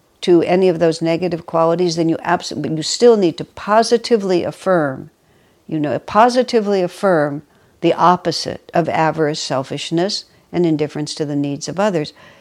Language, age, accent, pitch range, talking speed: English, 60-79, American, 150-180 Hz, 145 wpm